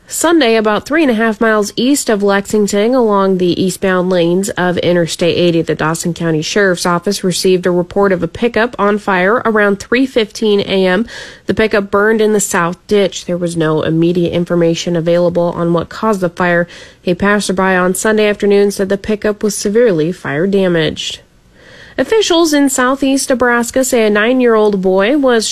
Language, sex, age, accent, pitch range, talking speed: English, female, 30-49, American, 185-230 Hz, 165 wpm